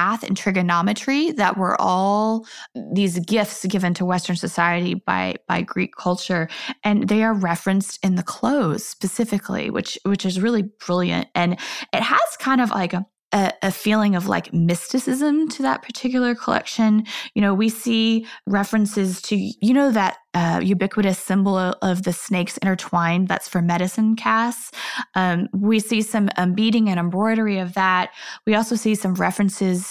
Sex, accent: female, American